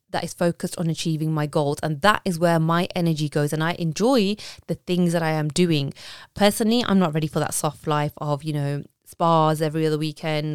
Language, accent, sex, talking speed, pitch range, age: English, British, female, 215 wpm, 155-200 Hz, 20-39